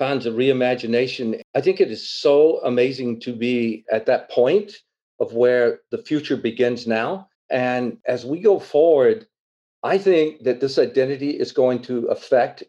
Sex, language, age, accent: male, English, 50-69, American